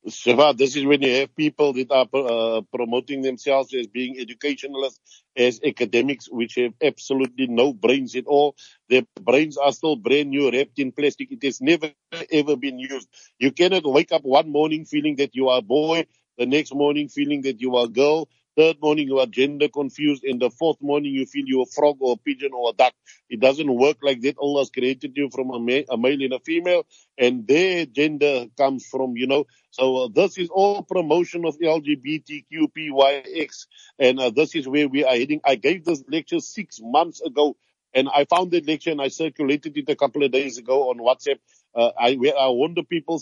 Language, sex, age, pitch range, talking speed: English, male, 60-79, 135-165 Hz, 205 wpm